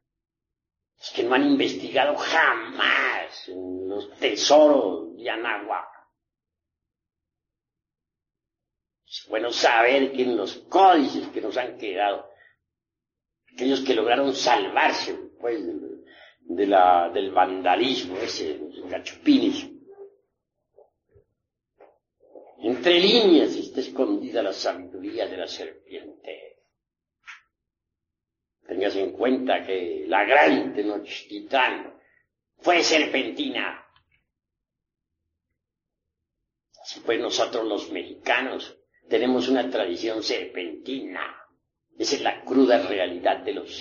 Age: 60-79